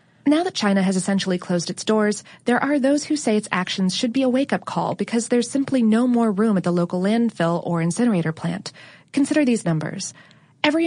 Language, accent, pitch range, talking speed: English, American, 180-235 Hz, 205 wpm